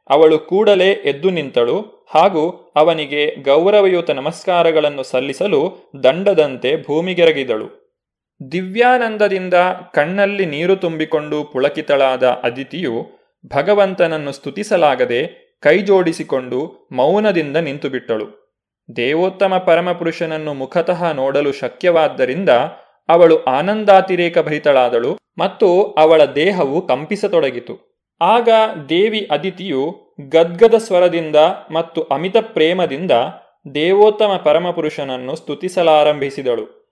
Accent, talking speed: native, 75 wpm